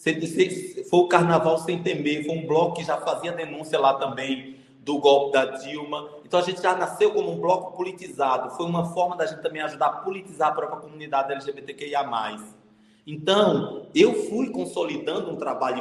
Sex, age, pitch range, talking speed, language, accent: male, 20-39, 145-190 Hz, 175 wpm, Portuguese, Brazilian